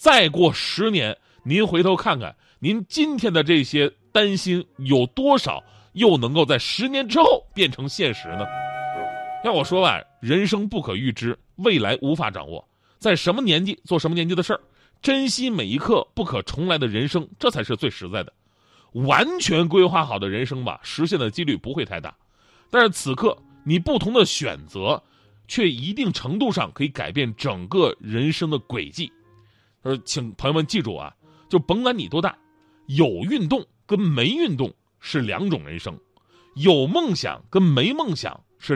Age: 30-49